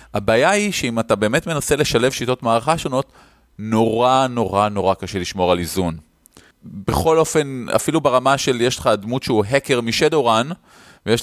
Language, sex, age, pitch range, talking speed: Hebrew, male, 30-49, 105-140 Hz, 160 wpm